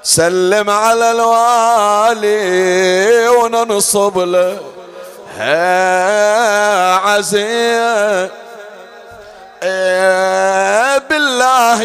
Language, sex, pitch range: Arabic, male, 210-250 Hz